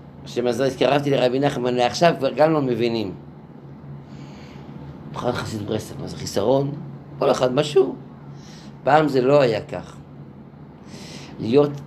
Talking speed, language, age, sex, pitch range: 120 wpm, Hebrew, 50-69, male, 115-160 Hz